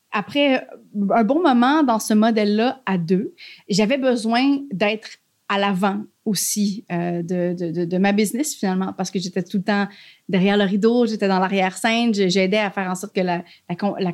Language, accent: French, Canadian